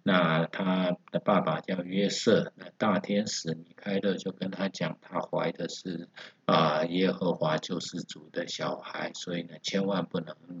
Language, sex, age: Chinese, male, 50-69